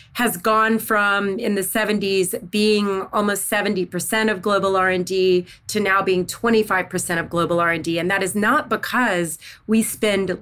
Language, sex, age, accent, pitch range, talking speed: English, female, 30-49, American, 180-220 Hz, 150 wpm